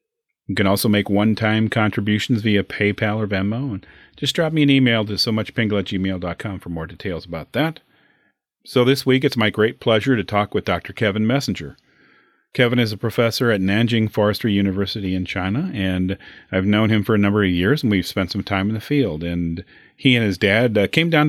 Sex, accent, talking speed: male, American, 210 wpm